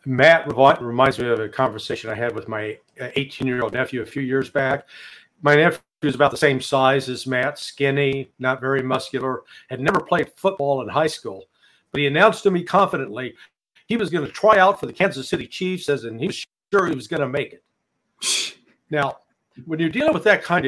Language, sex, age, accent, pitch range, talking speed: English, male, 50-69, American, 130-170 Hz, 205 wpm